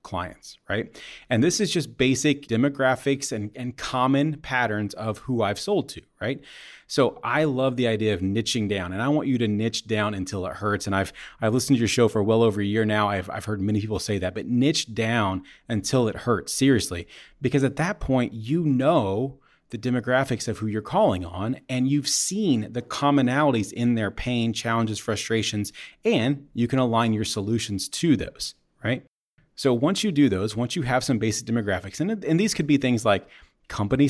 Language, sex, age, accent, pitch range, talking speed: English, male, 30-49, American, 110-135 Hz, 200 wpm